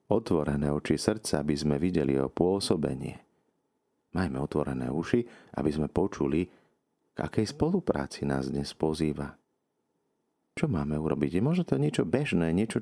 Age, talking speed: 40-59, 135 wpm